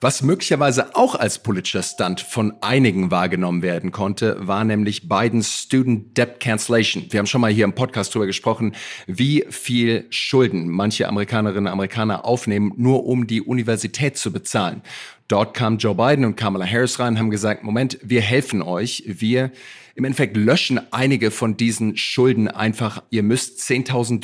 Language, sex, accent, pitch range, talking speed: German, male, German, 110-135 Hz, 165 wpm